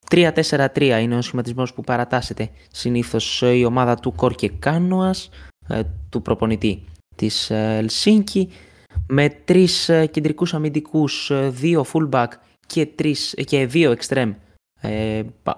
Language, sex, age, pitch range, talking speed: Greek, male, 20-39, 110-145 Hz, 110 wpm